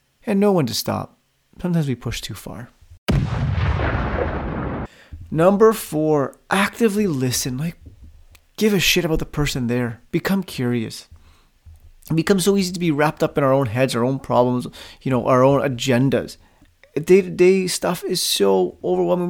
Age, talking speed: 30-49, 150 wpm